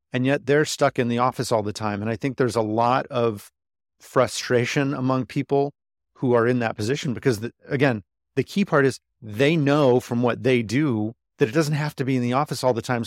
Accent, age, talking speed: American, 40-59, 230 wpm